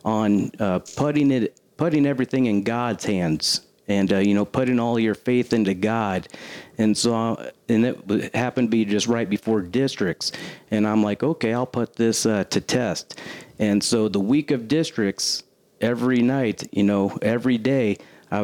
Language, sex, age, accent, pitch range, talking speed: English, male, 40-59, American, 105-120 Hz, 175 wpm